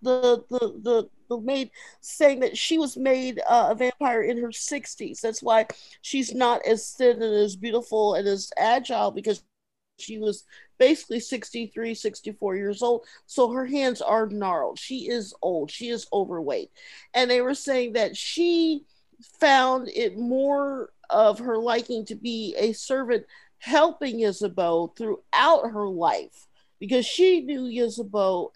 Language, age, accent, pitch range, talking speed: English, 50-69, American, 210-285 Hz, 145 wpm